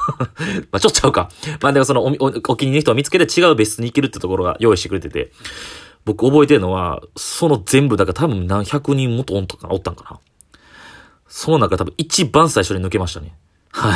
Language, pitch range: Japanese, 90-130 Hz